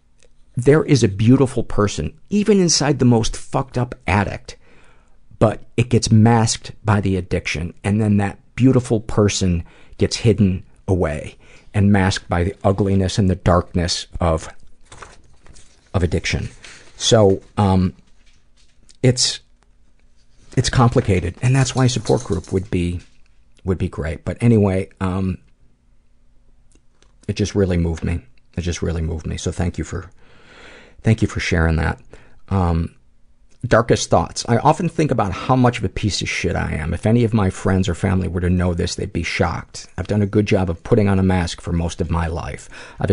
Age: 50-69